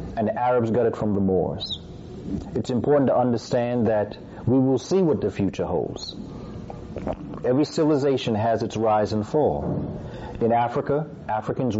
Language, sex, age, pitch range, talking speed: English, male, 40-59, 110-135 Hz, 155 wpm